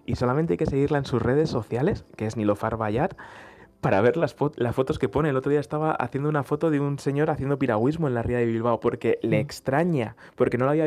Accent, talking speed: Spanish, 250 wpm